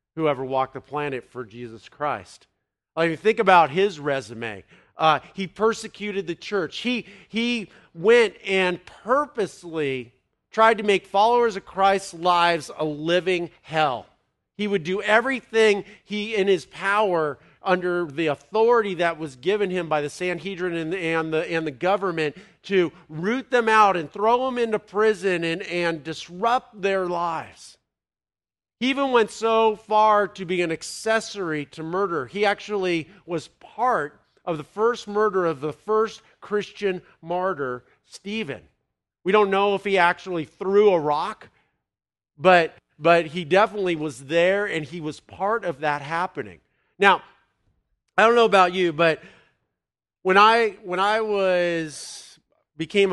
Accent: American